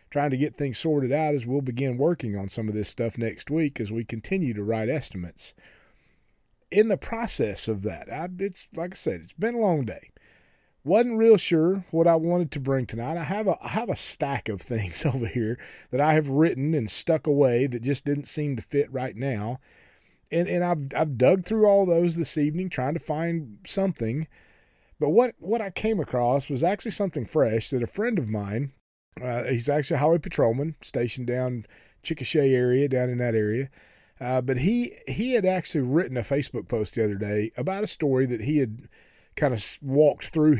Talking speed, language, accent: 205 wpm, English, American